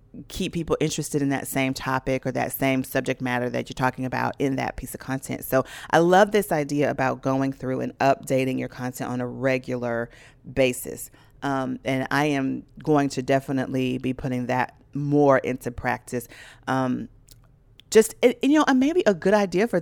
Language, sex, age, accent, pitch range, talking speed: English, female, 40-59, American, 130-160 Hz, 180 wpm